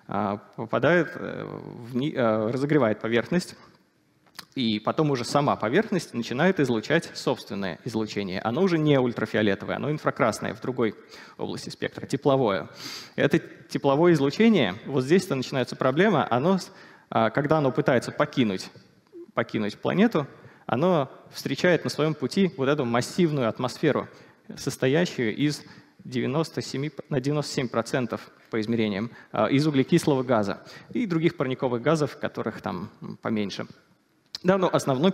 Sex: male